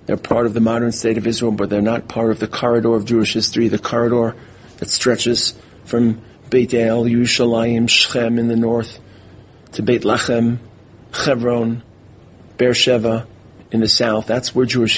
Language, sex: English, male